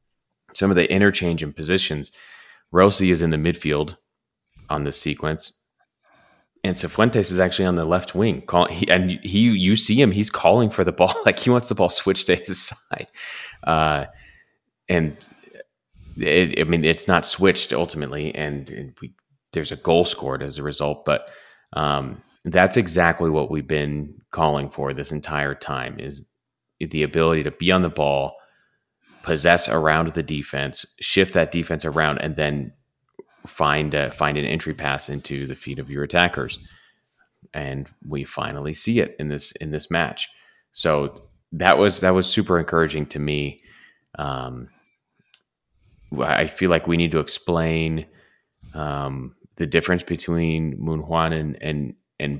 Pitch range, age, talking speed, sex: 75-90 Hz, 30-49, 160 wpm, male